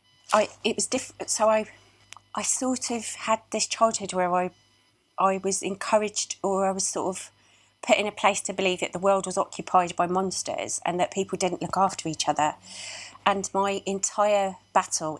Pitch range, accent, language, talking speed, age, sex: 150-200 Hz, British, English, 185 wpm, 30-49, female